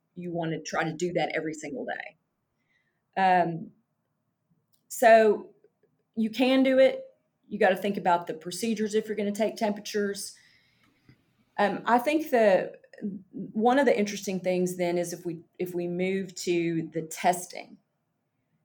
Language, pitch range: English, 165-210 Hz